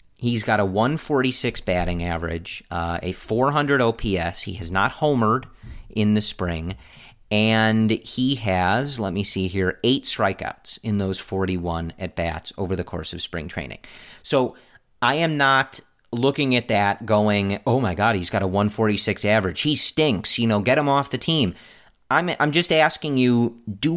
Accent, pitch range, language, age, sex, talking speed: American, 95-125 Hz, English, 40-59, male, 170 wpm